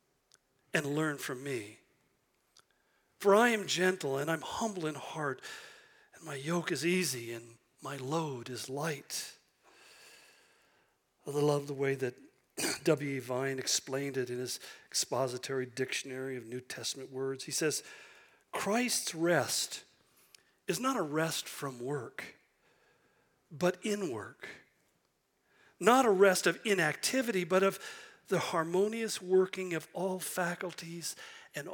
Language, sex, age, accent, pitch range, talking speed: English, male, 40-59, American, 135-185 Hz, 125 wpm